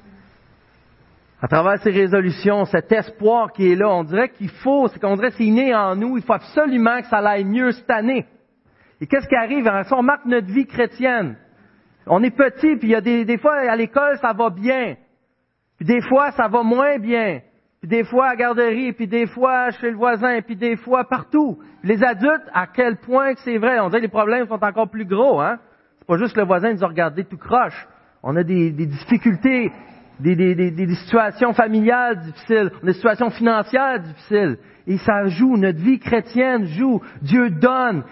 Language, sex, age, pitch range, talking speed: French, male, 40-59, 190-245 Hz, 210 wpm